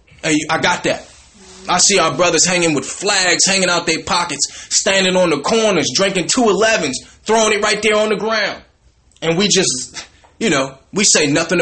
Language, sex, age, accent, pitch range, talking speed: English, male, 20-39, American, 145-195 Hz, 185 wpm